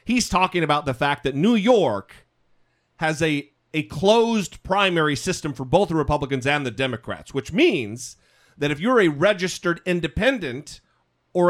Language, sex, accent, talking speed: English, male, American, 155 wpm